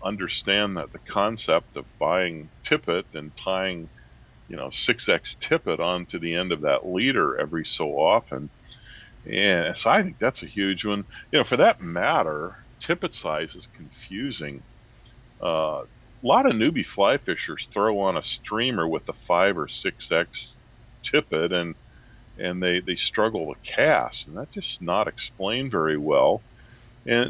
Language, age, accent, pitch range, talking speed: English, 50-69, American, 85-115 Hz, 160 wpm